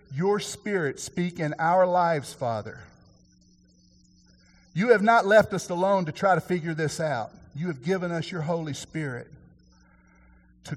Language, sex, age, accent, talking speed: English, male, 50-69, American, 150 wpm